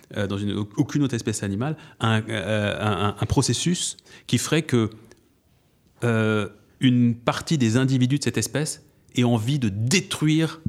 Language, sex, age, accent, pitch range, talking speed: French, male, 30-49, French, 115-145 Hz, 145 wpm